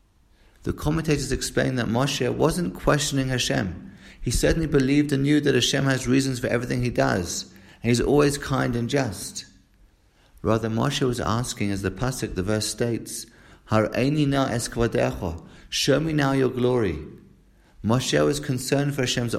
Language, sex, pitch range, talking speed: English, male, 105-135 Hz, 160 wpm